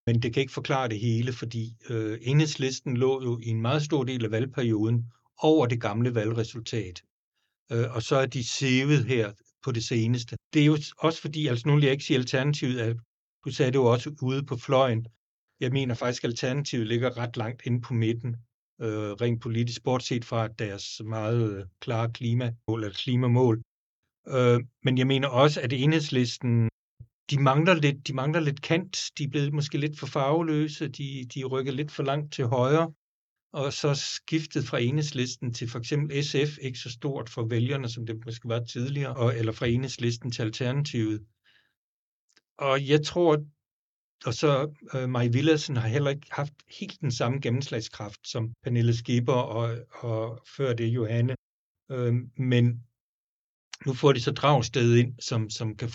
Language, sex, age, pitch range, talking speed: Danish, male, 60-79, 115-140 Hz, 175 wpm